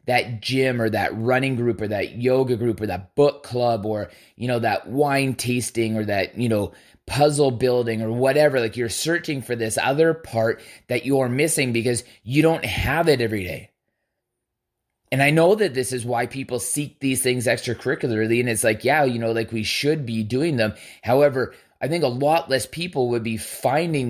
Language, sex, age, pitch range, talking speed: English, male, 20-39, 115-145 Hz, 200 wpm